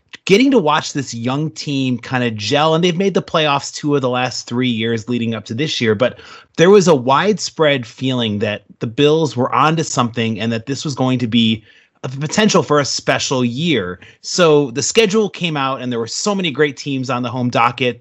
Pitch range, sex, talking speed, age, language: 120-160 Hz, male, 220 wpm, 30-49, English